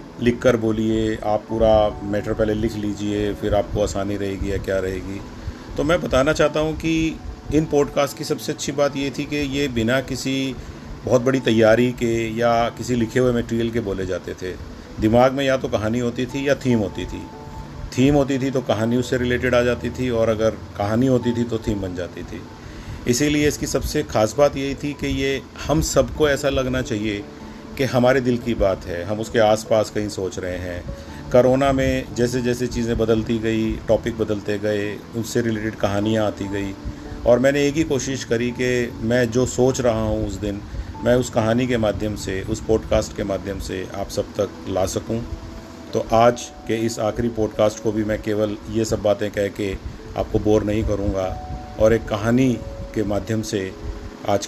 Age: 40-59